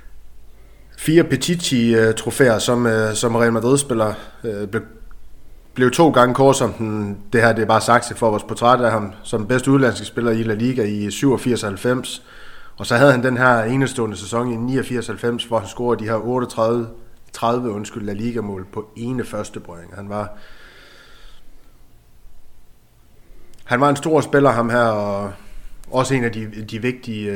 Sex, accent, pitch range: male, native, 105-125 Hz